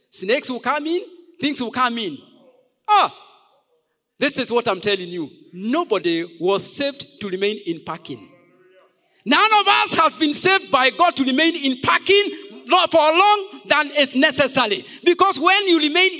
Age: 50-69